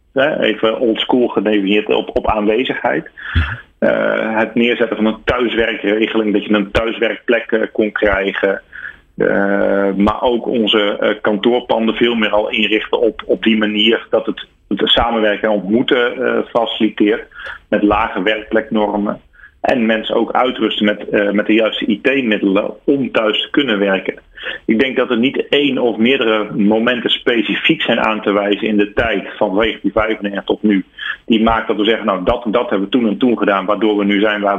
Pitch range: 100-110 Hz